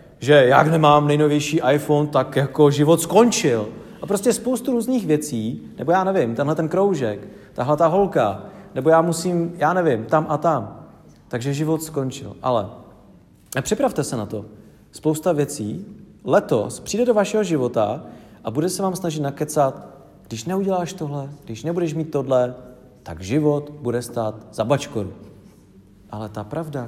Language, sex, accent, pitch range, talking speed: English, male, Czech, 115-160 Hz, 150 wpm